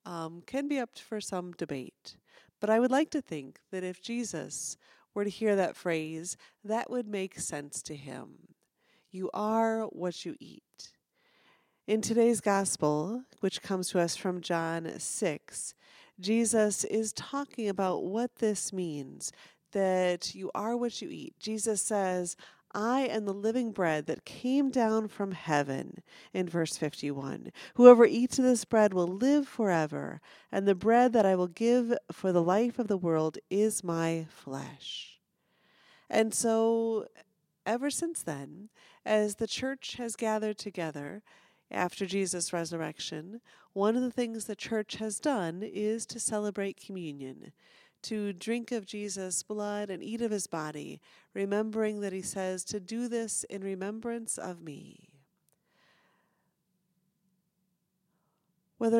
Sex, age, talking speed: female, 40-59, 145 wpm